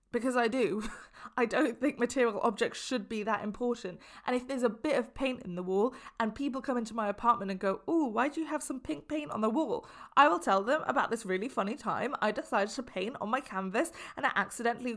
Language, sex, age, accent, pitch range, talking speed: English, female, 20-39, British, 205-260 Hz, 240 wpm